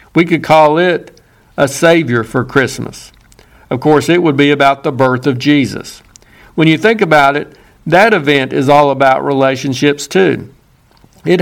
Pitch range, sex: 135-165 Hz, male